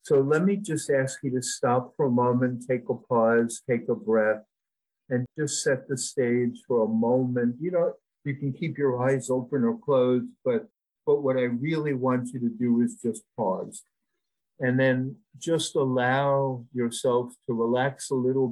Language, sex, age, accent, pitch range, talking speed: English, male, 50-69, American, 115-140 Hz, 180 wpm